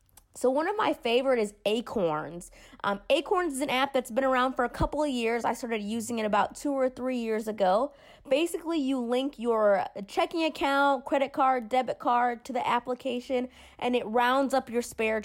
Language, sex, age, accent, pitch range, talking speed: English, female, 20-39, American, 205-270 Hz, 195 wpm